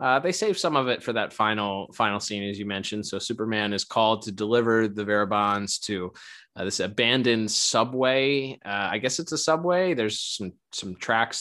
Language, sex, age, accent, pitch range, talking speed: English, male, 20-39, American, 105-120 Hz, 195 wpm